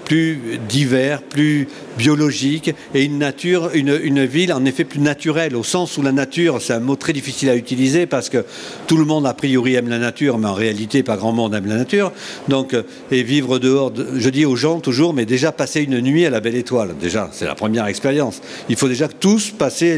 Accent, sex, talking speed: French, male, 220 wpm